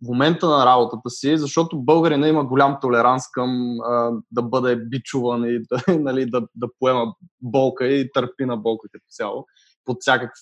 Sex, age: male, 20-39